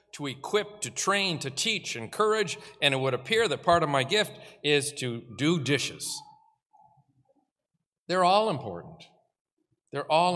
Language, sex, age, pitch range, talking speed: English, male, 50-69, 130-180 Hz, 145 wpm